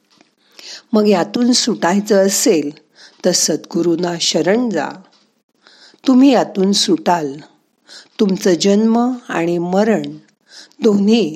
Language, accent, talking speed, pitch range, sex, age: Marathi, native, 65 wpm, 165-220 Hz, female, 50-69